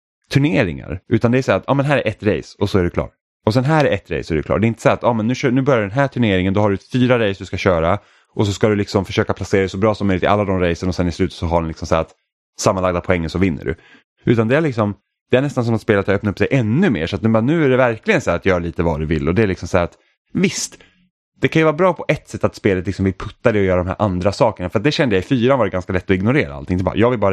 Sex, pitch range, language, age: male, 90-125 Hz, Swedish, 10-29